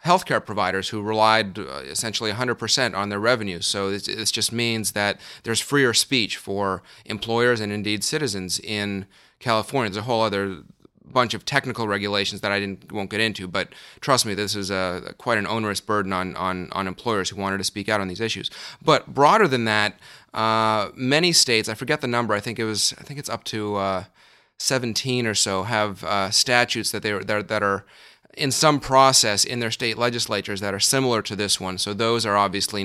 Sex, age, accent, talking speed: male, 30-49, American, 205 wpm